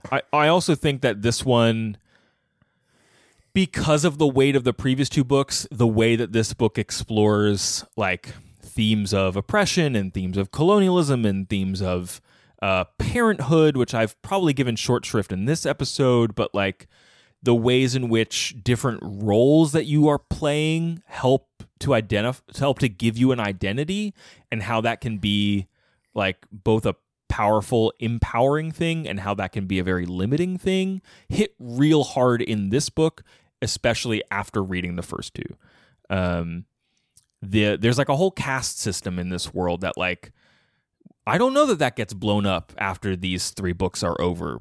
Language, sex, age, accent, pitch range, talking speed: English, male, 20-39, American, 100-140 Hz, 165 wpm